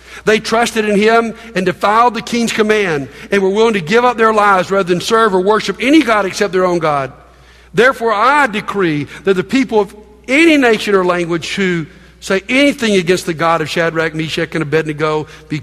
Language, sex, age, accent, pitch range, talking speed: English, male, 60-79, American, 140-210 Hz, 195 wpm